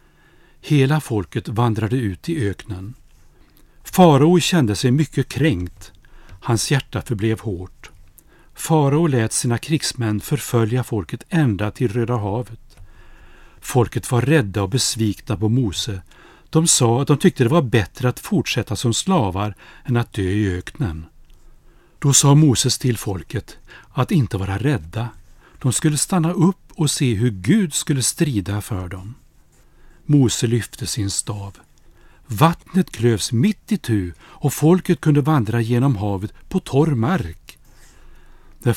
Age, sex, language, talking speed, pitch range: 60-79, male, Swedish, 140 wpm, 105-145 Hz